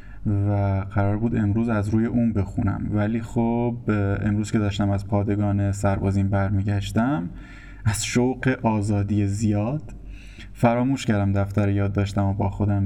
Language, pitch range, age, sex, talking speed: Persian, 100-120 Hz, 20-39, male, 130 wpm